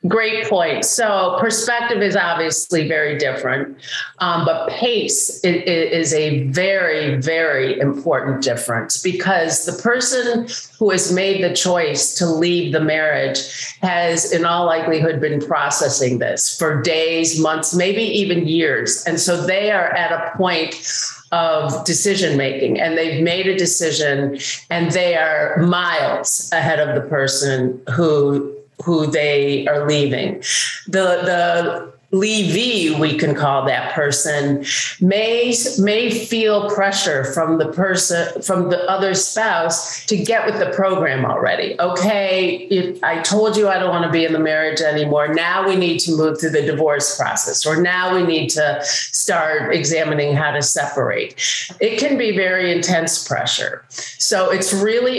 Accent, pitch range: American, 155-190 Hz